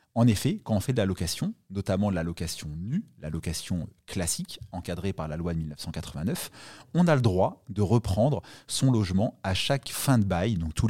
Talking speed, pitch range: 205 wpm, 95-130 Hz